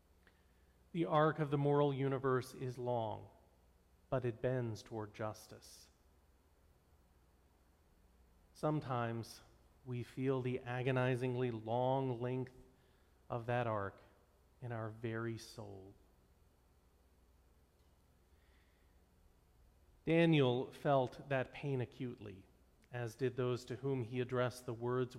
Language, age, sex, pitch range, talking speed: English, 40-59, male, 95-155 Hz, 100 wpm